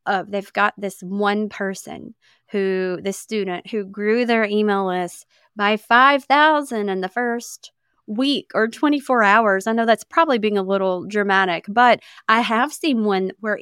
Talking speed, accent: 165 wpm, American